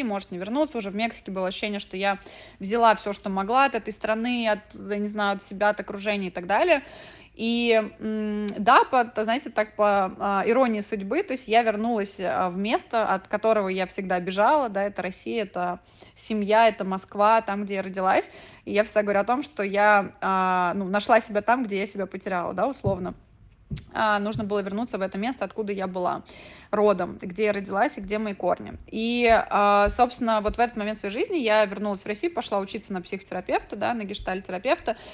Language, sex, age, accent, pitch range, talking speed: Russian, female, 20-39, native, 200-230 Hz, 185 wpm